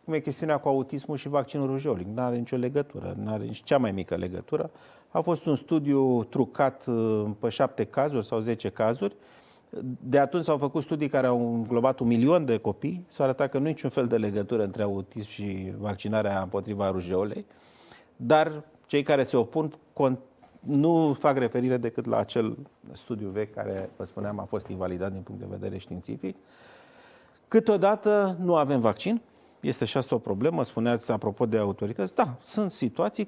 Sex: male